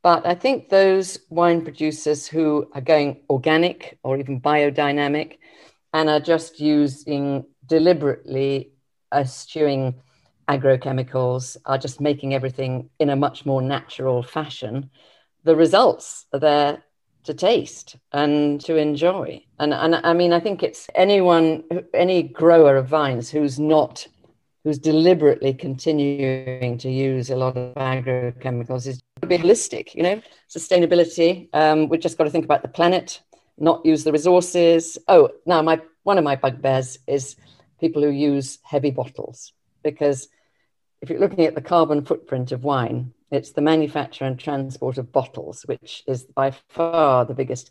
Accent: British